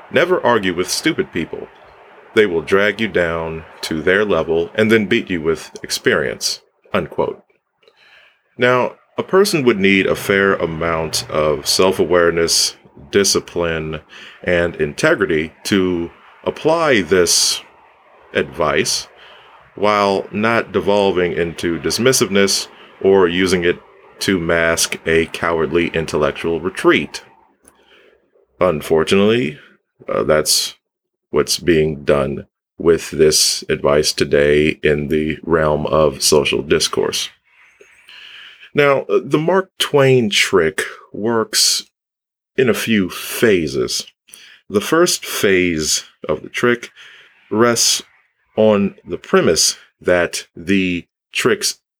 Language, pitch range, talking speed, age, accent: English, 80-120 Hz, 105 wpm, 30-49, American